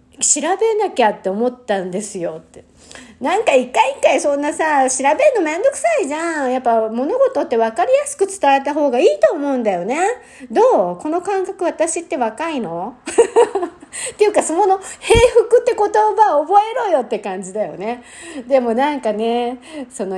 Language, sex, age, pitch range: Japanese, female, 50-69, 225-355 Hz